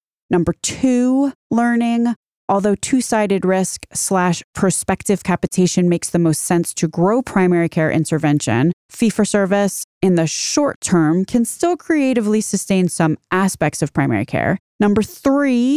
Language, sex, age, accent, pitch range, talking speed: English, female, 30-49, American, 165-235 Hz, 140 wpm